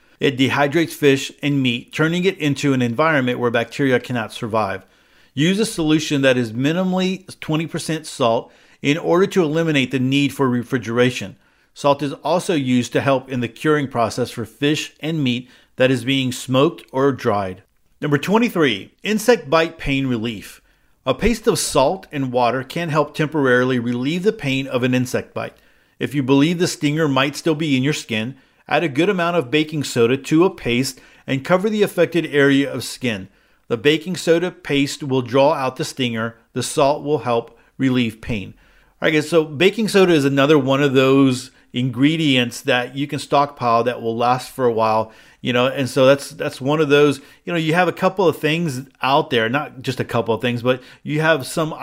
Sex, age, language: male, 50-69, English